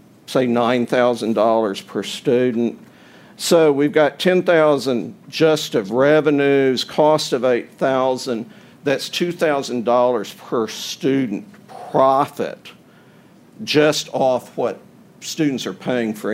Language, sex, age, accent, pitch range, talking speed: English, male, 50-69, American, 120-155 Hz, 95 wpm